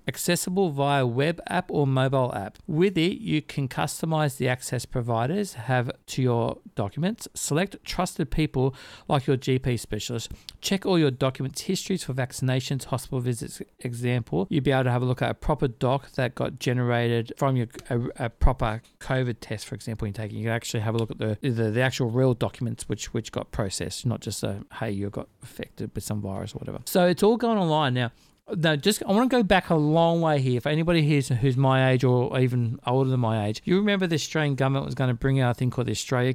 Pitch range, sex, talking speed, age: 115-145 Hz, male, 225 wpm, 50-69